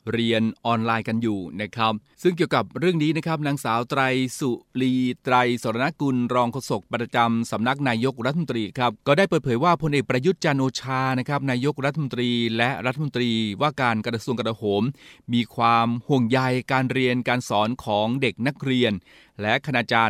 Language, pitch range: Thai, 115-135 Hz